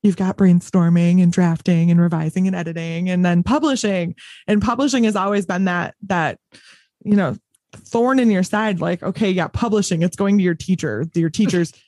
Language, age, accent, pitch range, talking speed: English, 20-39, American, 185-250 Hz, 185 wpm